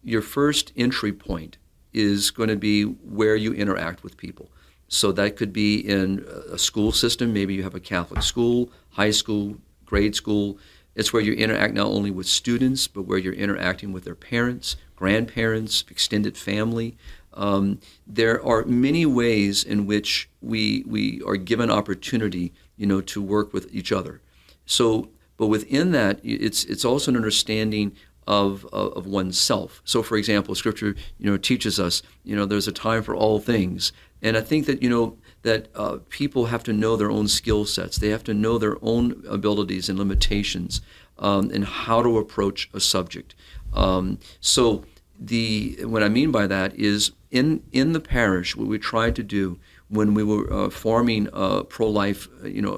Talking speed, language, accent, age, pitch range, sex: 175 wpm, English, American, 50-69, 95-115 Hz, male